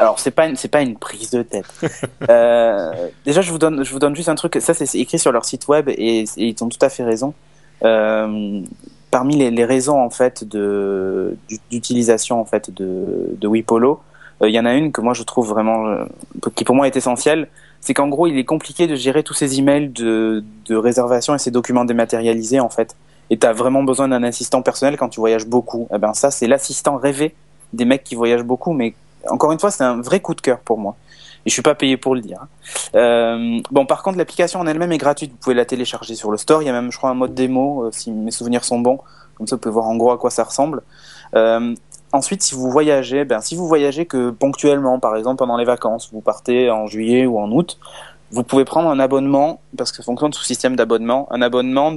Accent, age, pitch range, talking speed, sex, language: French, 20-39, 115-140 Hz, 240 wpm, male, French